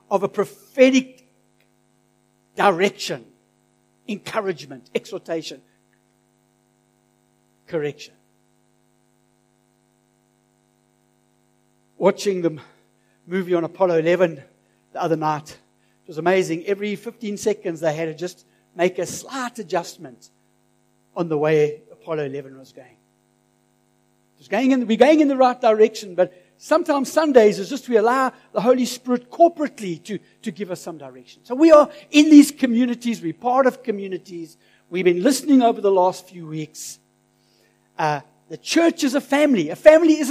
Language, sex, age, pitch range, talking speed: English, male, 60-79, 150-250 Hz, 135 wpm